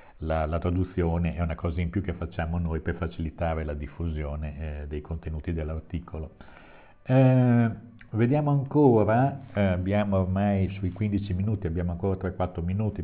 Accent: native